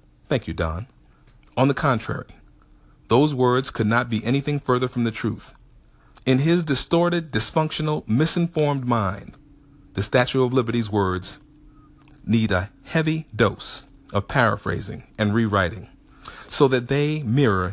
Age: 40-59